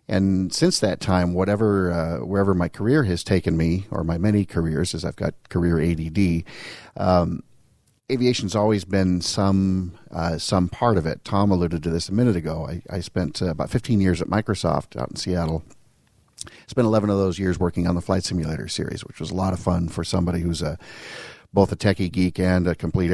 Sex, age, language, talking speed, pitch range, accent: male, 50-69, English, 200 wpm, 85-95 Hz, American